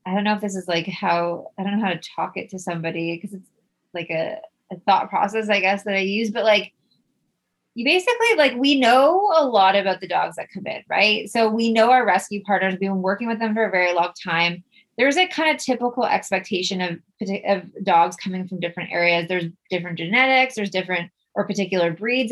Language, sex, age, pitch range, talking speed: English, female, 20-39, 180-225 Hz, 220 wpm